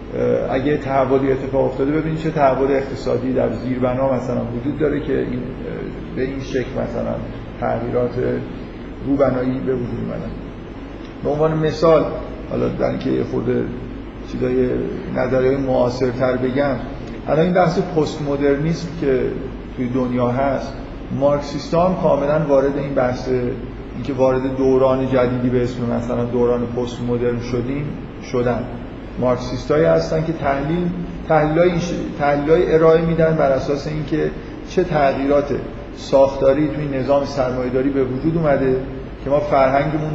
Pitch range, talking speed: 125-140 Hz, 135 wpm